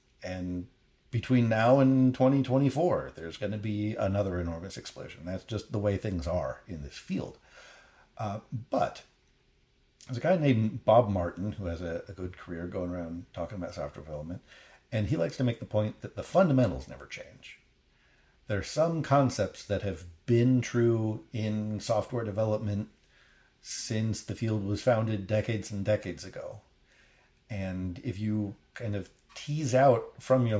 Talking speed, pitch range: 160 wpm, 90-120 Hz